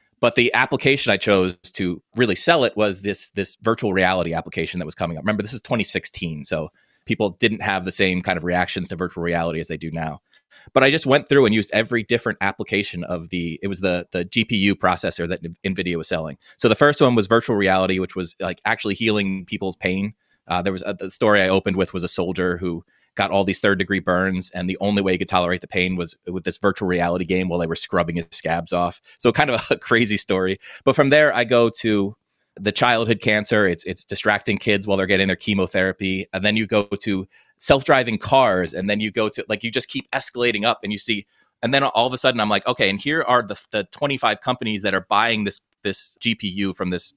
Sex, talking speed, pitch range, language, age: male, 235 wpm, 90-110 Hz, English, 30-49